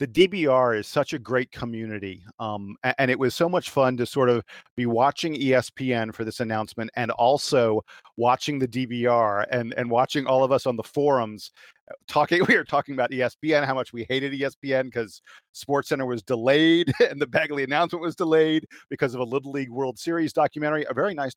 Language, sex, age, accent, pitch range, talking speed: English, male, 40-59, American, 125-160 Hz, 195 wpm